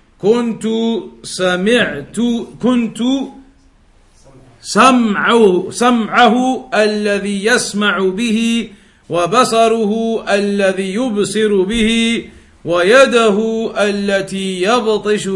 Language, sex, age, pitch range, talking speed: English, male, 50-69, 200-225 Hz, 60 wpm